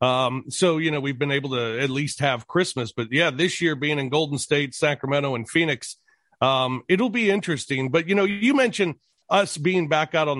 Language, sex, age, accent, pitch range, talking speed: English, male, 40-59, American, 130-170 Hz, 215 wpm